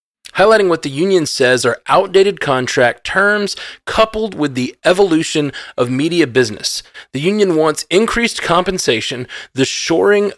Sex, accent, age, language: male, American, 20-39, English